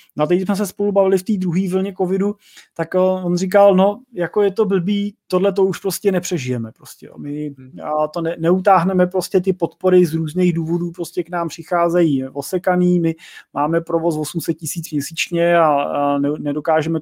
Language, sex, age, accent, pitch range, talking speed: Czech, male, 30-49, native, 145-185 Hz, 180 wpm